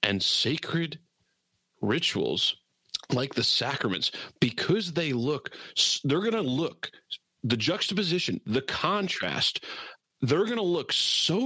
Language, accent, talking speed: English, American, 115 wpm